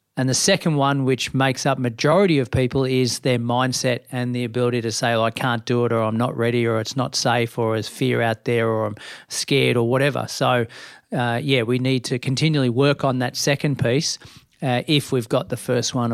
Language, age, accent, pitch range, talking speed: English, 40-59, Australian, 120-145 Hz, 225 wpm